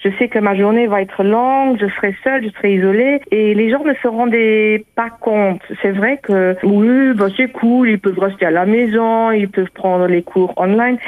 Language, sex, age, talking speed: Portuguese, female, 50-69, 220 wpm